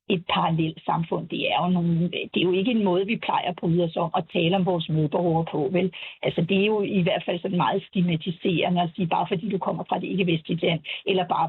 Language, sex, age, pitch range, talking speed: Danish, female, 60-79, 175-210 Hz, 245 wpm